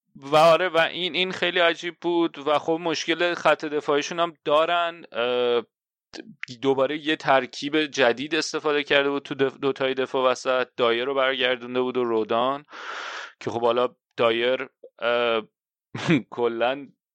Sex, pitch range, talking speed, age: male, 120-155 Hz, 140 wpm, 30-49